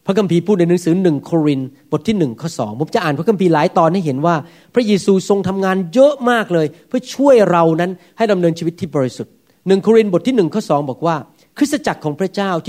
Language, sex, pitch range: Thai, male, 165-230 Hz